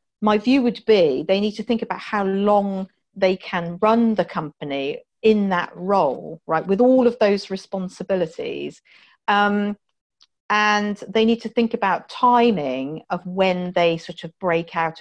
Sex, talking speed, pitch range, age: female, 160 wpm, 170-215 Hz, 40-59